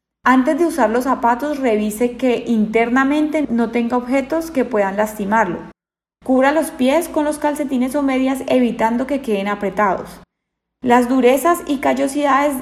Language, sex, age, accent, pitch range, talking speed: Spanish, female, 10-29, Colombian, 225-275 Hz, 145 wpm